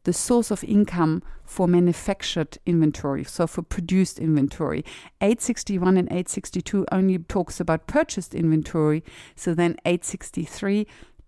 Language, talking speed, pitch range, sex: English, 115 wpm, 165-210 Hz, female